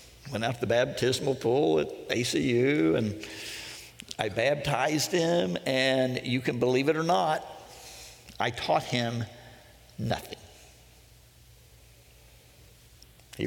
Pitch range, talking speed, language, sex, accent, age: 110-155 Hz, 105 wpm, English, male, American, 60-79